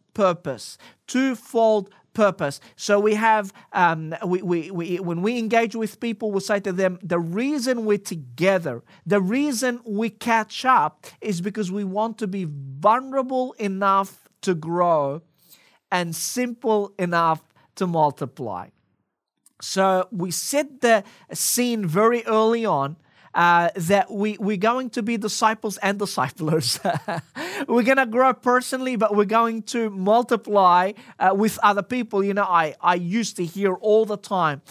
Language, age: English, 40-59